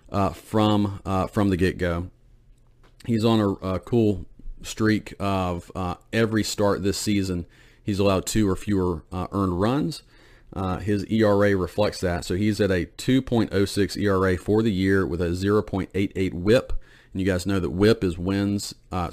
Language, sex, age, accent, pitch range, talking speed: English, male, 40-59, American, 95-110 Hz, 165 wpm